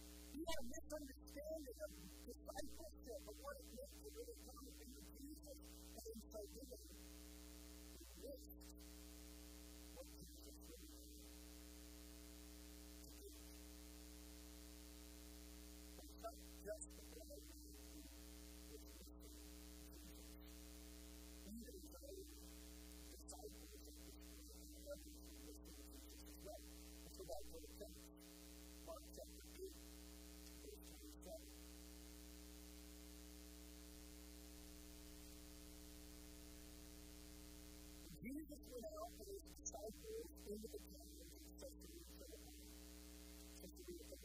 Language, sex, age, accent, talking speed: English, female, 50-69, American, 40 wpm